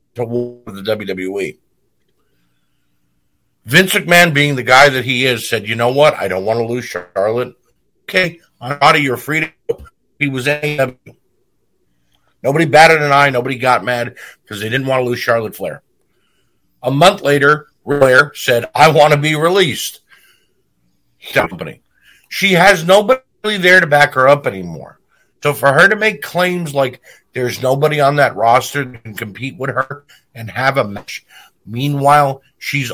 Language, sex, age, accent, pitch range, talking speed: English, male, 50-69, American, 120-150 Hz, 160 wpm